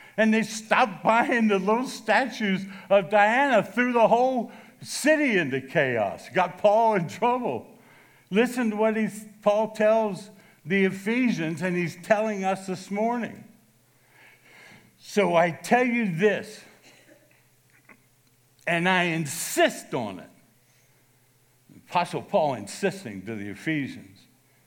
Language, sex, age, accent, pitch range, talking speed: English, male, 60-79, American, 155-220 Hz, 115 wpm